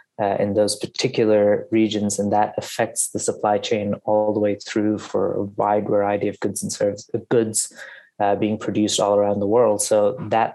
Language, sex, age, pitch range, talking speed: English, male, 20-39, 100-115 Hz, 175 wpm